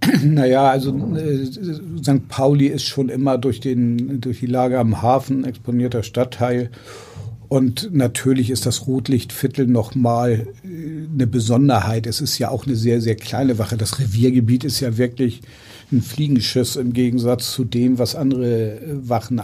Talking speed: 150 wpm